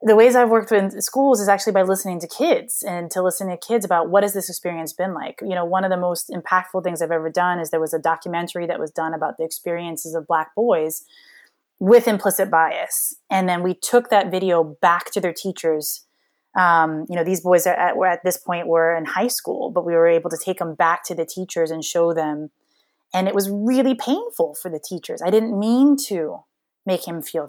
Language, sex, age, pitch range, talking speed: English, female, 20-39, 170-215 Hz, 230 wpm